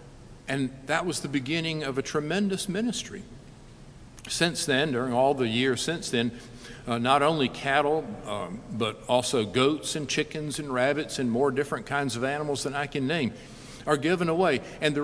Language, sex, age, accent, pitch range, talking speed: English, male, 50-69, American, 120-145 Hz, 175 wpm